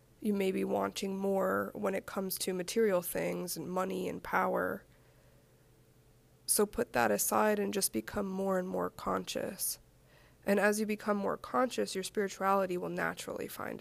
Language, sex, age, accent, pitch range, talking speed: English, female, 20-39, American, 175-215 Hz, 160 wpm